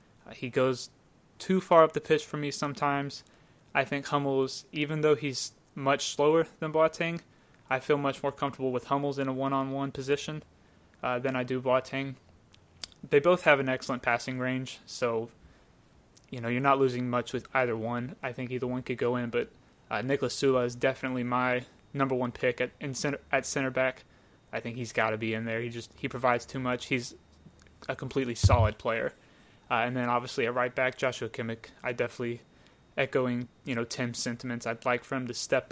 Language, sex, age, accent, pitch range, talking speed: English, male, 20-39, American, 120-140 Hz, 195 wpm